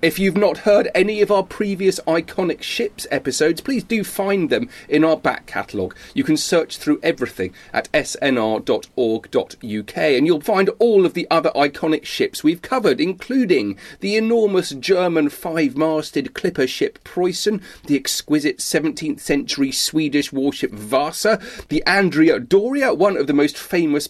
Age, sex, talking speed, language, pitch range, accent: 40-59, male, 150 wpm, English, 135-220 Hz, British